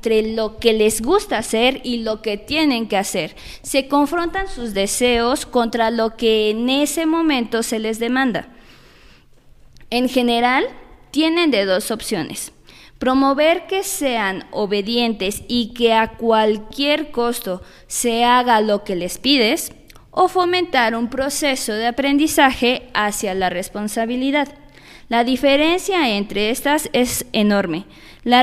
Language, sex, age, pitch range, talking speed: Spanish, female, 20-39, 220-270 Hz, 130 wpm